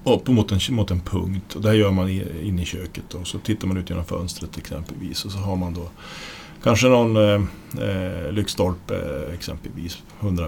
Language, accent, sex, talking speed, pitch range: Swedish, Norwegian, male, 190 wpm, 90-115 Hz